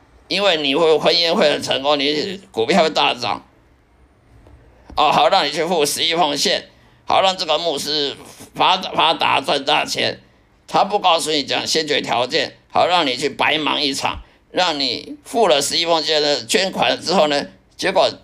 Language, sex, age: Chinese, male, 50-69